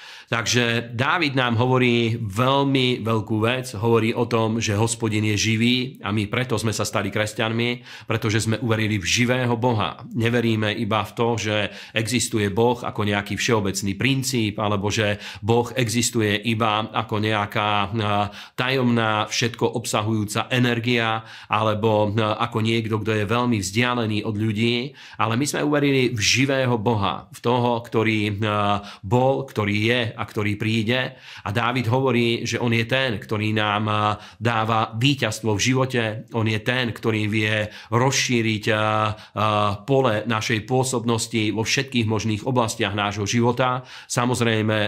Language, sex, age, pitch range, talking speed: Slovak, male, 40-59, 110-120 Hz, 140 wpm